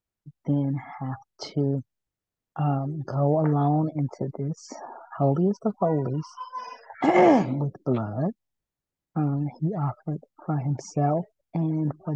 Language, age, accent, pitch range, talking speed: English, 40-59, American, 140-155 Hz, 100 wpm